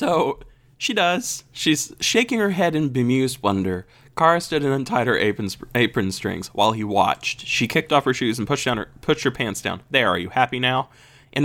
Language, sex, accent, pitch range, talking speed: English, male, American, 110-140 Hz, 210 wpm